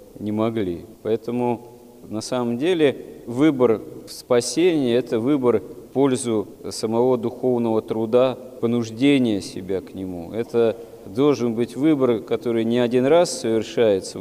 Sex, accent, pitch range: male, native, 100-120 Hz